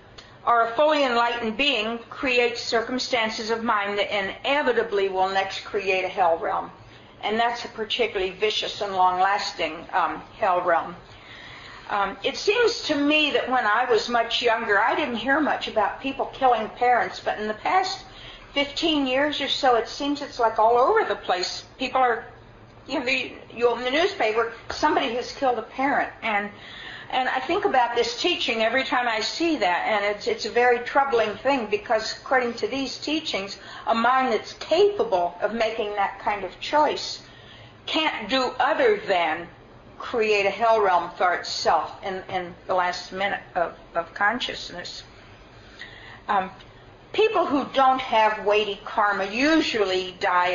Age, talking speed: 50-69, 160 wpm